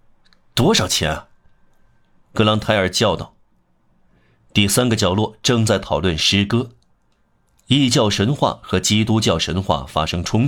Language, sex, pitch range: Chinese, male, 85-110 Hz